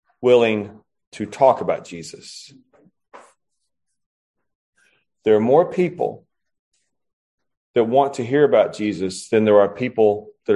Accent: American